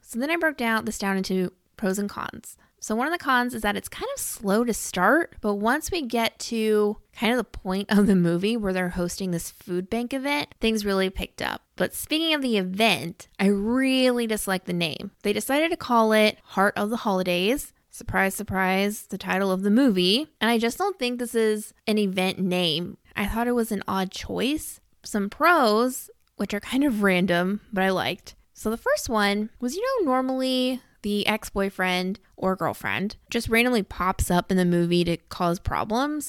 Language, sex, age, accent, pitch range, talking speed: English, female, 20-39, American, 190-245 Hz, 200 wpm